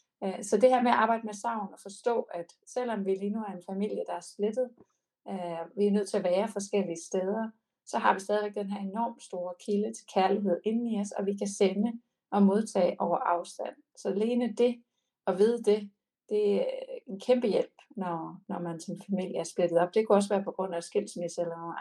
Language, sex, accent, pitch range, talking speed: Danish, female, native, 175-215 Hz, 225 wpm